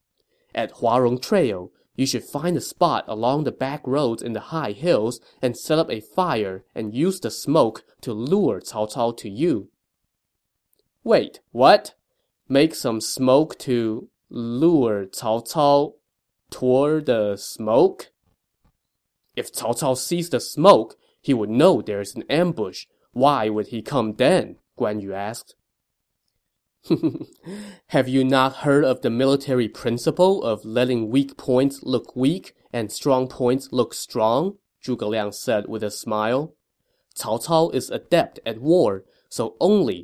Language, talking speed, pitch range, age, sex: English, 145 wpm, 110-145 Hz, 20-39, male